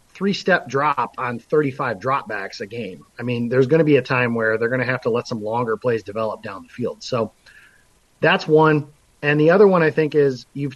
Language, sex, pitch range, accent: English, male, 125-155 Hz, American